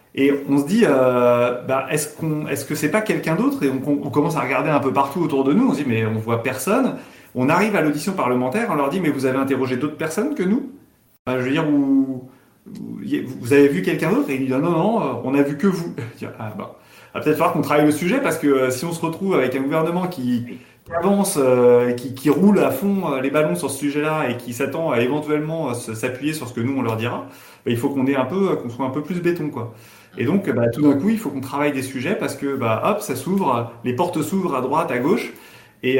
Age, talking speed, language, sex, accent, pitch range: 30-49, 265 wpm, French, male, French, 120-160 Hz